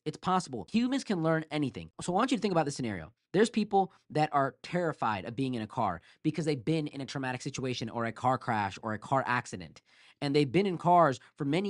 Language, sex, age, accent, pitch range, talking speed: English, male, 20-39, American, 130-165 Hz, 240 wpm